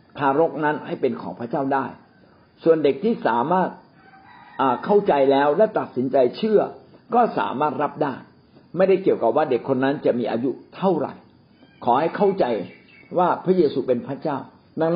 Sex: male